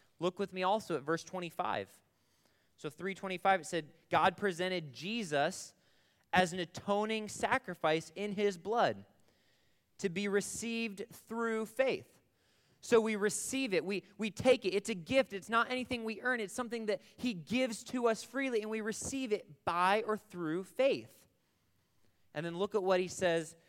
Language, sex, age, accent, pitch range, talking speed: English, male, 20-39, American, 155-210 Hz, 165 wpm